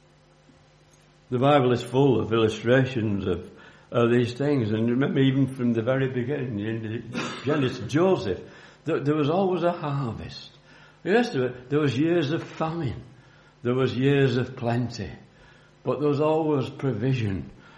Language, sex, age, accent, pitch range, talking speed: English, male, 60-79, British, 110-140 Hz, 140 wpm